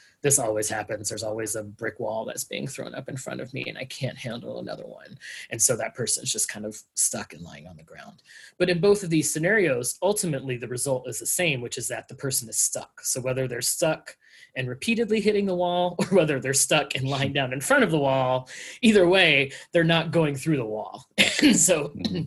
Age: 30-49